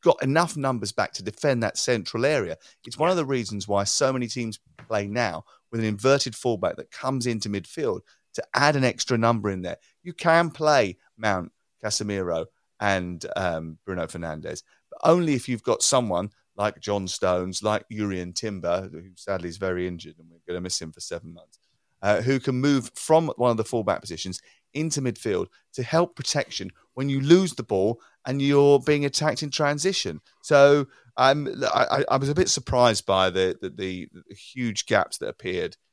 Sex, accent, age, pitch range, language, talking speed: male, British, 30-49, 95-135 Hz, English, 185 wpm